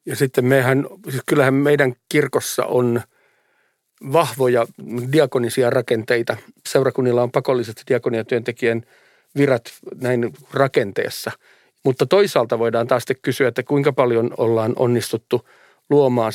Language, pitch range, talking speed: Finnish, 120-140 Hz, 105 wpm